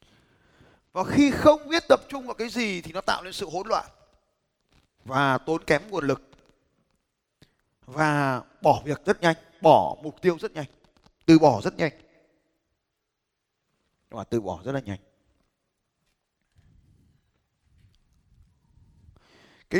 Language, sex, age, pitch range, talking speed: Vietnamese, male, 20-39, 135-210 Hz, 125 wpm